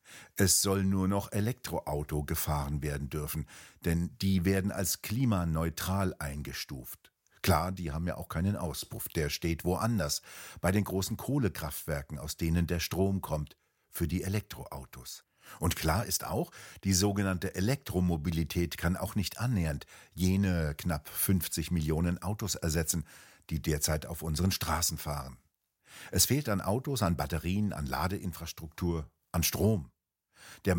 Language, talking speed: German, 135 wpm